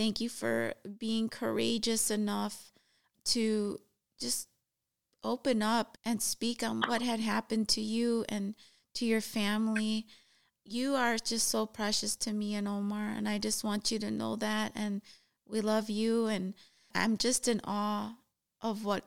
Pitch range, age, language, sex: 210-235 Hz, 30-49, English, female